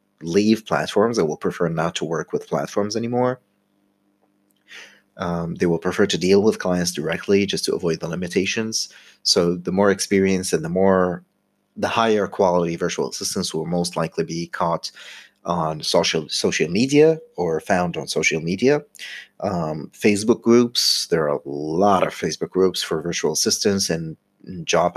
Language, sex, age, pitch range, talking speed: English, male, 30-49, 85-105 Hz, 160 wpm